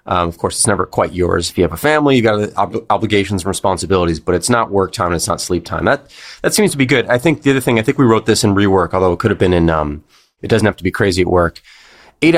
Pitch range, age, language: 95-120 Hz, 30-49, English